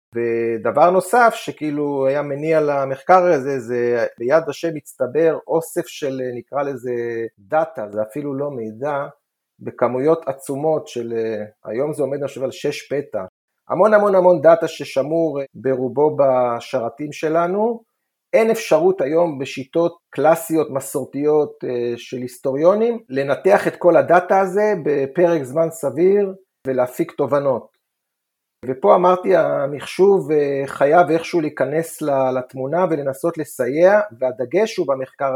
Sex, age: male, 40-59